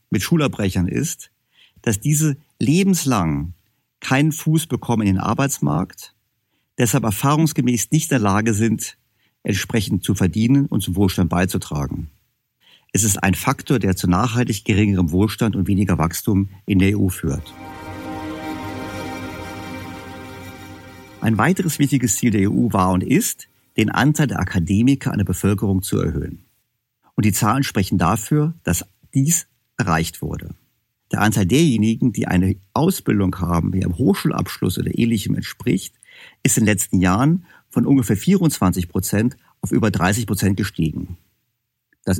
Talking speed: 135 wpm